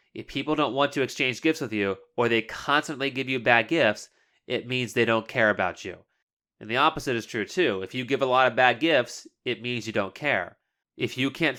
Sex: male